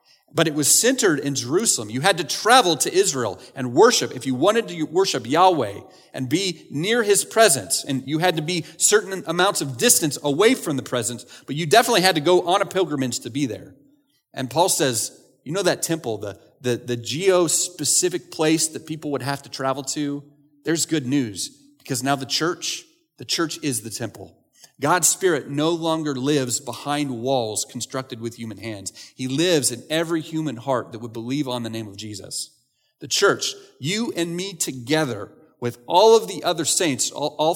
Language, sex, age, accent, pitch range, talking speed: English, male, 30-49, American, 125-170 Hz, 190 wpm